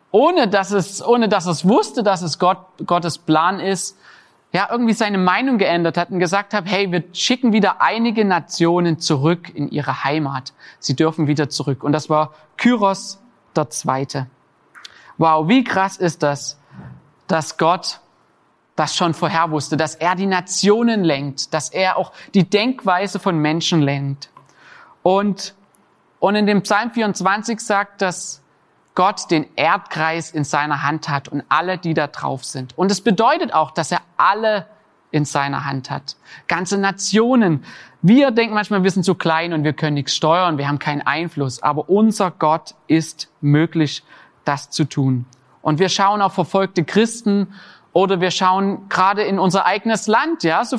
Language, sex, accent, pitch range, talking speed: German, male, German, 155-200 Hz, 165 wpm